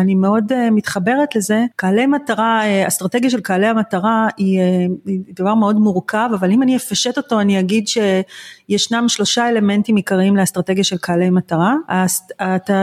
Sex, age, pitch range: female, 40-59, 190-240 Hz